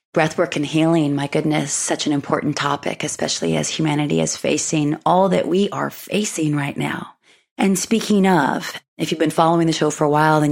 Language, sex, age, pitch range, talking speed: English, female, 30-49, 150-170 Hz, 195 wpm